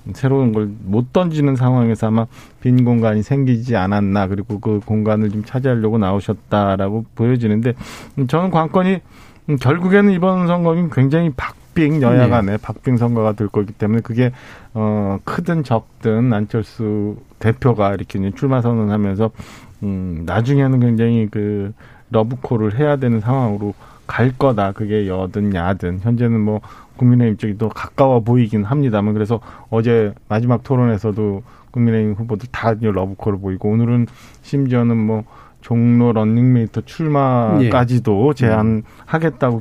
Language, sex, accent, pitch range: Korean, male, native, 110-135 Hz